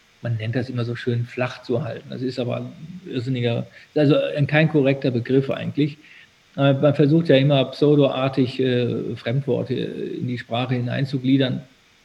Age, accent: 50-69, German